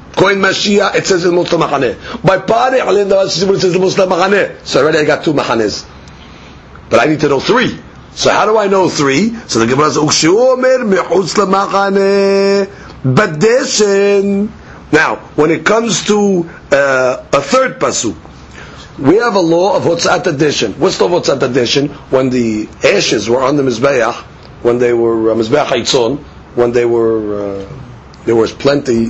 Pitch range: 130-195 Hz